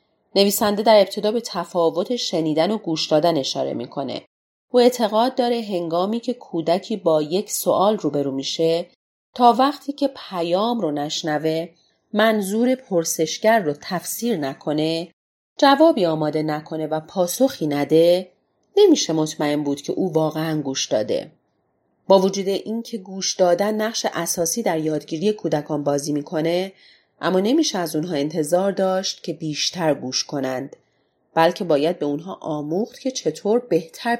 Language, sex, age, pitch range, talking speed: Persian, female, 30-49, 160-220 Hz, 135 wpm